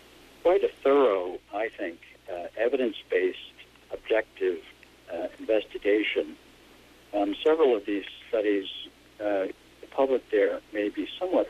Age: 60-79